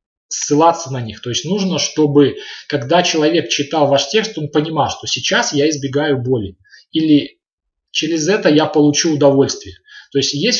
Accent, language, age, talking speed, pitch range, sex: native, Russian, 20-39, 160 wpm, 135-170 Hz, male